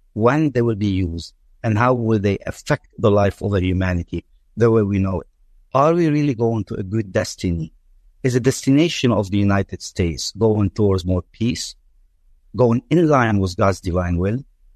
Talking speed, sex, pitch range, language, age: 185 wpm, male, 85-120 Hz, English, 50-69